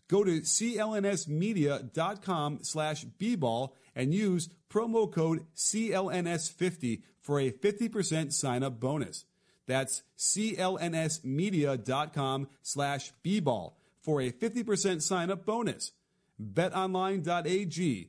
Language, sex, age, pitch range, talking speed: English, male, 30-49, 115-160 Hz, 85 wpm